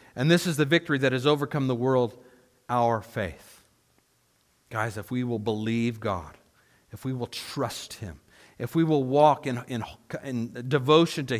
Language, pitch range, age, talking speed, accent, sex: English, 115-145 Hz, 50-69, 165 wpm, American, male